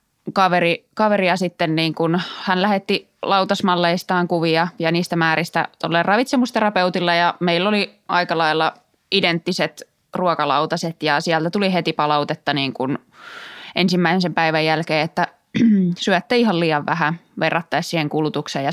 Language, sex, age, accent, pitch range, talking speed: Finnish, female, 20-39, native, 155-180 Hz, 130 wpm